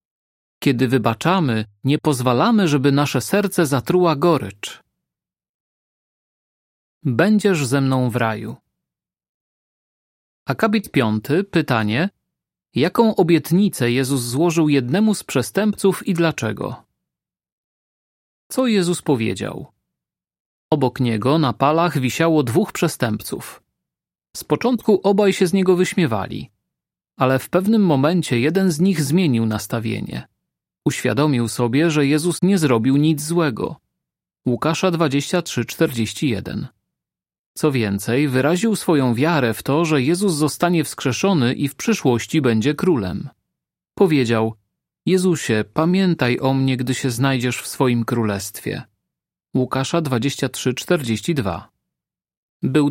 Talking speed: 110 wpm